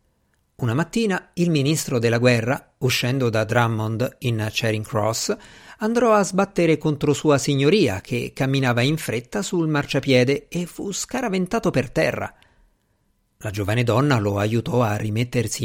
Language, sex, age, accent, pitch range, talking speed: Italian, male, 50-69, native, 115-180 Hz, 140 wpm